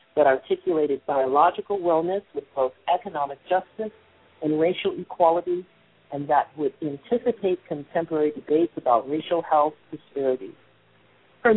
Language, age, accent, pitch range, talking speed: English, 50-69, American, 145-190 Hz, 115 wpm